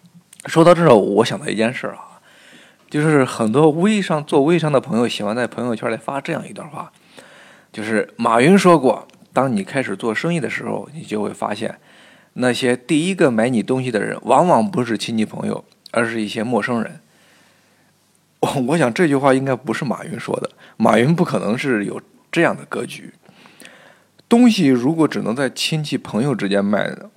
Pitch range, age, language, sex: 115-170 Hz, 20-39, Chinese, male